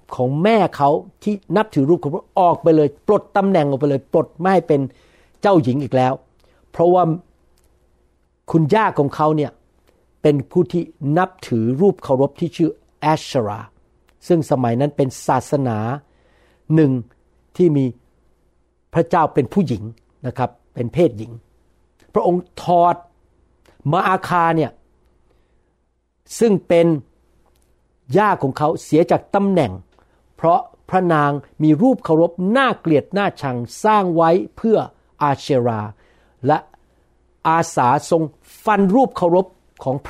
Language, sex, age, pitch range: Thai, male, 60-79, 115-170 Hz